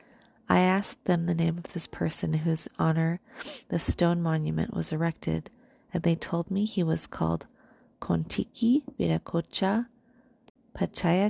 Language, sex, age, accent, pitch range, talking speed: English, female, 30-49, American, 165-225 Hz, 125 wpm